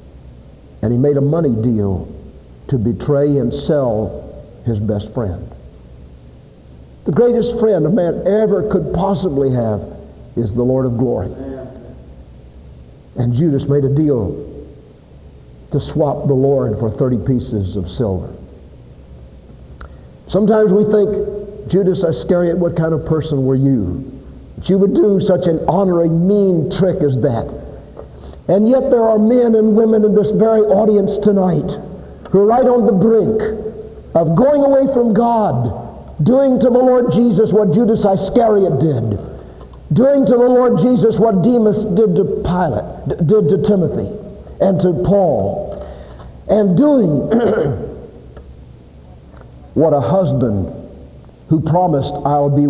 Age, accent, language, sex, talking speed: 60-79, American, English, male, 135 wpm